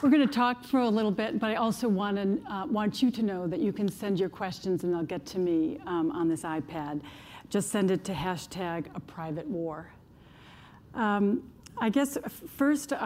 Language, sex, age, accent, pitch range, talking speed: English, female, 50-69, American, 175-205 Hz, 205 wpm